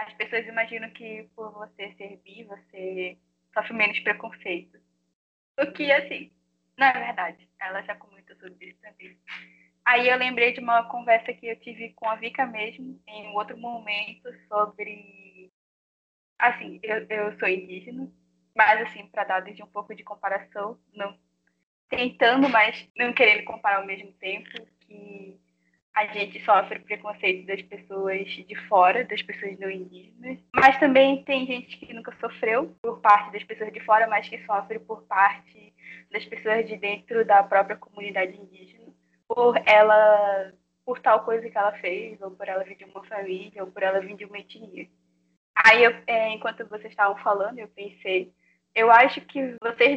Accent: Brazilian